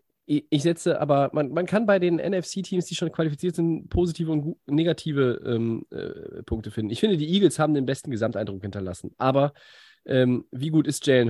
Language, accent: German, German